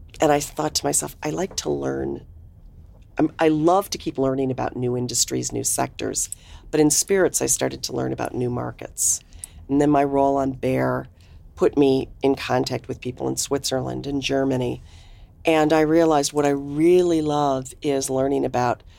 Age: 40-59